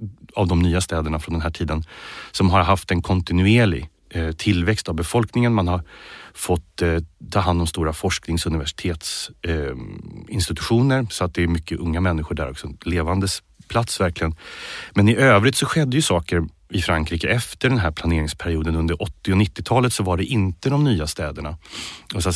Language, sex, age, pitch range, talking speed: English, male, 30-49, 85-110 Hz, 170 wpm